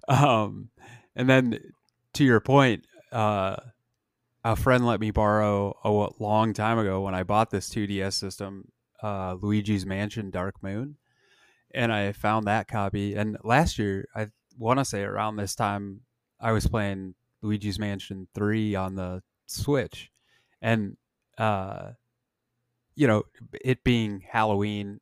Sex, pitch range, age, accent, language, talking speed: male, 100-120 Hz, 30-49, American, English, 140 wpm